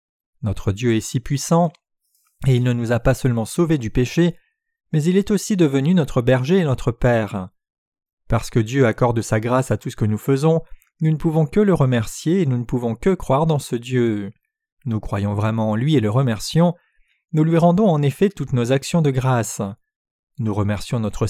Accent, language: French, French